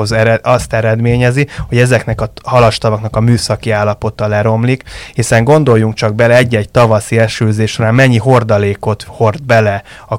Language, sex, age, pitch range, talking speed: Hungarian, male, 20-39, 110-125 Hz, 130 wpm